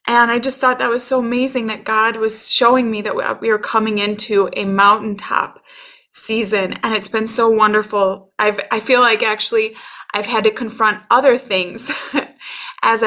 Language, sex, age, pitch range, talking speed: English, female, 20-39, 205-240 Hz, 180 wpm